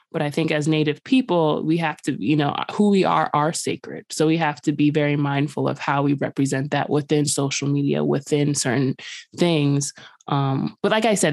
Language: English